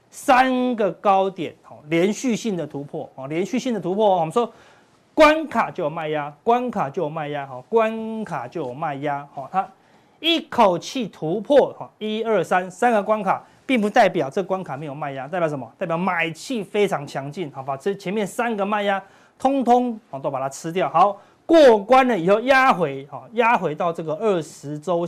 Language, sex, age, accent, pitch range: Chinese, male, 30-49, native, 160-225 Hz